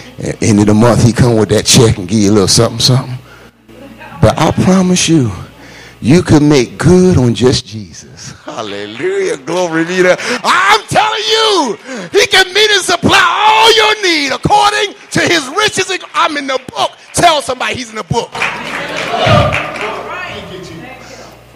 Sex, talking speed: male, 160 wpm